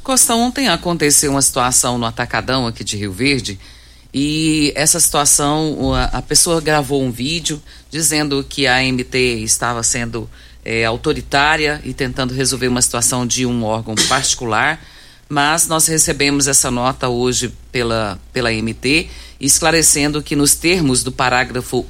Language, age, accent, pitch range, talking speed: Portuguese, 50-69, Brazilian, 130-160 Hz, 140 wpm